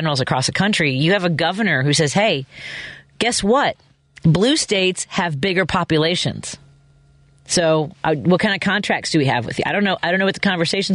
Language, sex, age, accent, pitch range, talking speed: English, female, 40-59, American, 140-185 Hz, 205 wpm